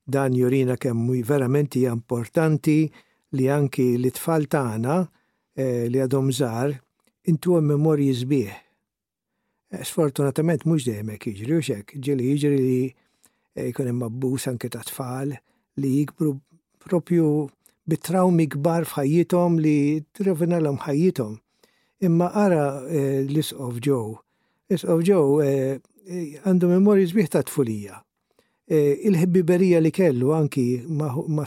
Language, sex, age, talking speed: English, male, 60-79, 110 wpm